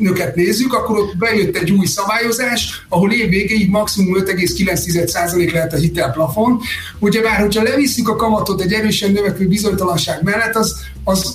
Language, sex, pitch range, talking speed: Hungarian, male, 170-210 Hz, 155 wpm